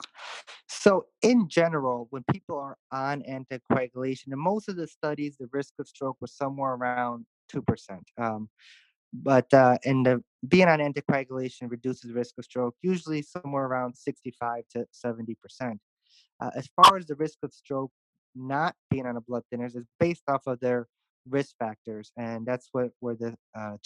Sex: male